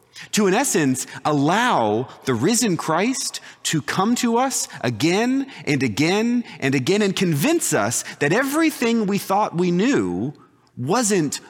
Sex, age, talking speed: male, 30-49, 135 wpm